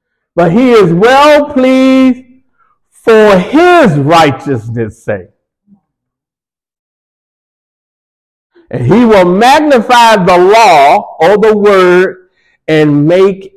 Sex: male